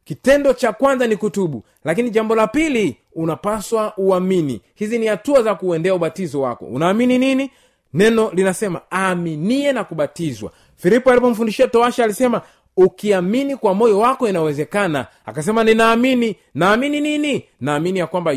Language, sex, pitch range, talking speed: Swahili, male, 170-235 Hz, 135 wpm